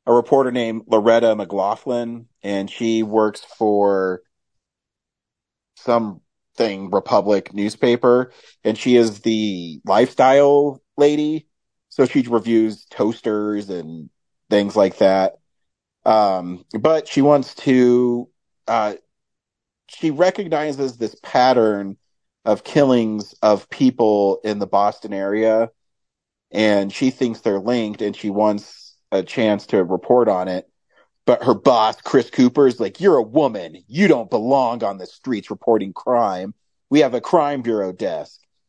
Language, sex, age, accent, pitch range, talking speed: English, male, 30-49, American, 105-130 Hz, 125 wpm